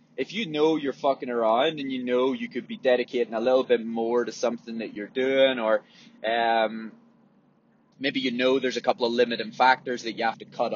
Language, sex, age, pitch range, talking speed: English, male, 20-39, 120-165 Hz, 210 wpm